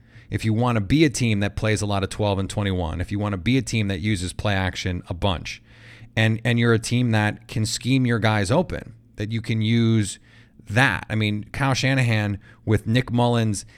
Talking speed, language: 220 wpm, English